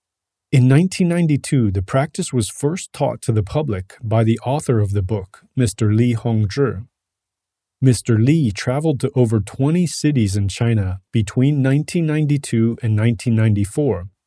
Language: English